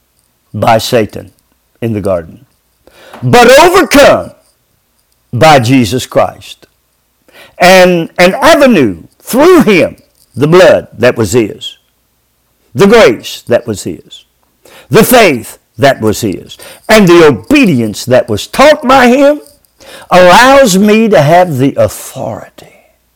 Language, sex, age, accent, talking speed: English, male, 50-69, American, 115 wpm